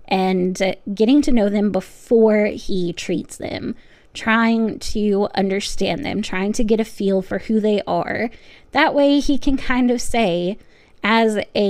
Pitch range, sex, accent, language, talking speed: 190-240 Hz, female, American, English, 160 wpm